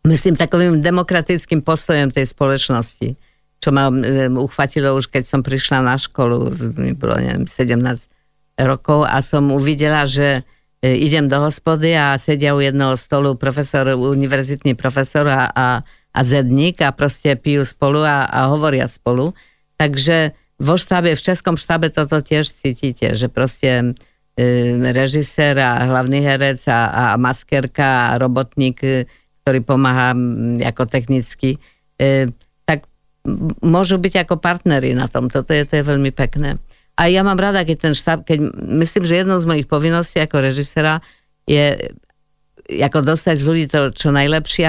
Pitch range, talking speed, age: 130-155 Hz, 145 wpm, 50-69